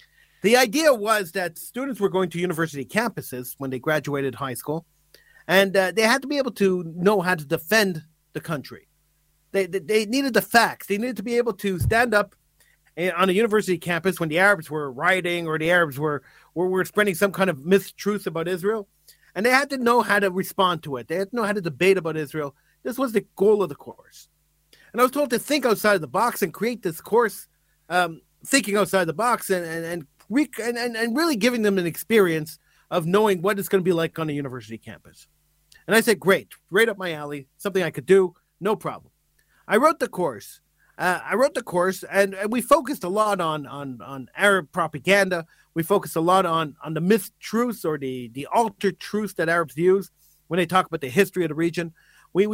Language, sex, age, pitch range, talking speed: English, male, 40-59, 160-210 Hz, 220 wpm